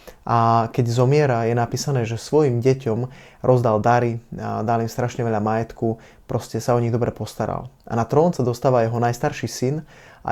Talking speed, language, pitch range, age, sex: 170 wpm, Slovak, 115-135 Hz, 20-39, male